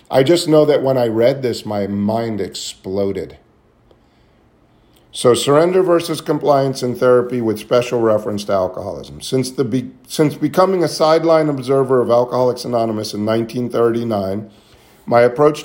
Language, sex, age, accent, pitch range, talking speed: English, male, 50-69, American, 115-140 Hz, 140 wpm